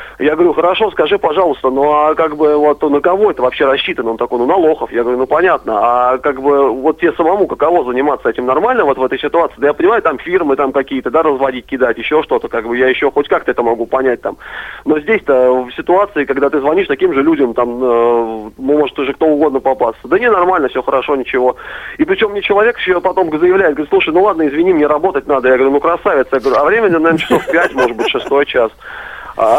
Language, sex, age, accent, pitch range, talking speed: Russian, male, 30-49, native, 130-185 Hz, 230 wpm